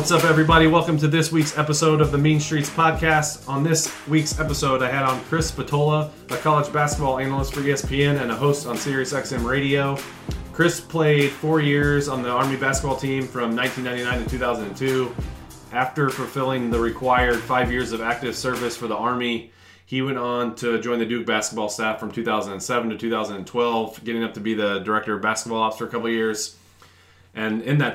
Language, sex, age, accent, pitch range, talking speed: English, male, 30-49, American, 105-135 Hz, 190 wpm